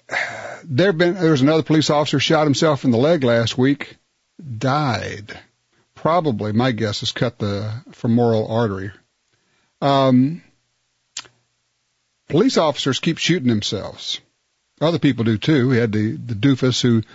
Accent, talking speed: American, 135 wpm